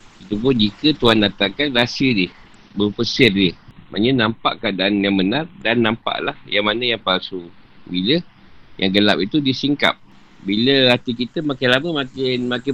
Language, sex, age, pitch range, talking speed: Malay, male, 50-69, 105-140 Hz, 145 wpm